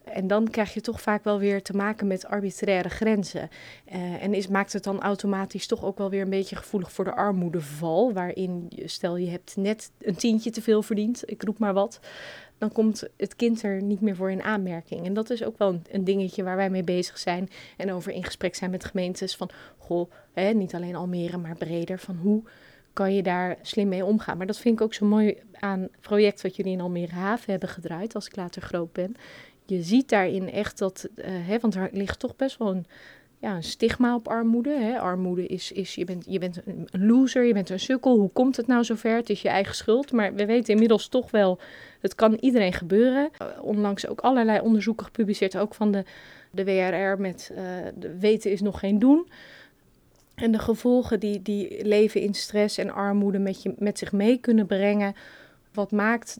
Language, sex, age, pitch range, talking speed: Dutch, female, 30-49, 190-220 Hz, 215 wpm